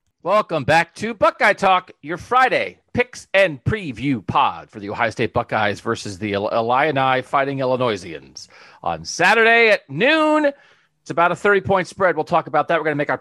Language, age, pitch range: English, 40-59, 135-185 Hz